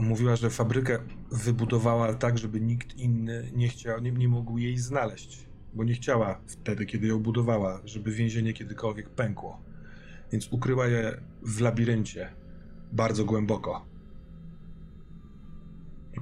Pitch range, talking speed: 105-120 Hz, 125 wpm